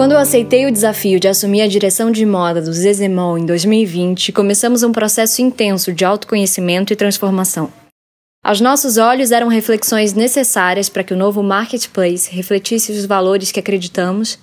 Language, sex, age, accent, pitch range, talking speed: Portuguese, female, 10-29, Brazilian, 185-225 Hz, 160 wpm